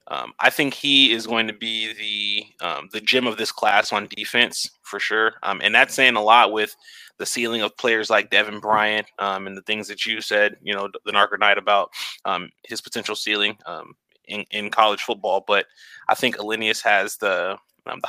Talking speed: 205 wpm